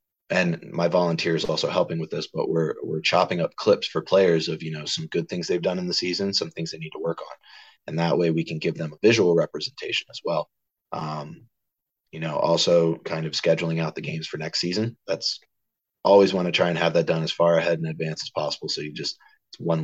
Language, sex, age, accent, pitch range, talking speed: English, male, 20-39, American, 80-90 Hz, 240 wpm